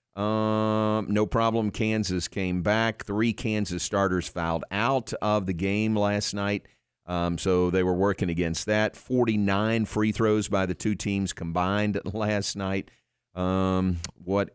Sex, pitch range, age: male, 90-110 Hz, 50-69